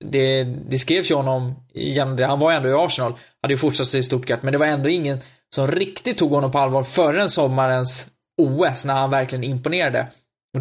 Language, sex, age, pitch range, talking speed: Swedish, male, 20-39, 130-140 Hz, 200 wpm